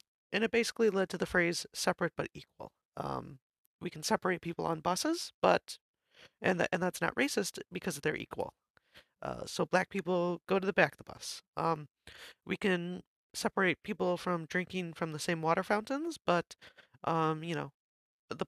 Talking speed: 180 wpm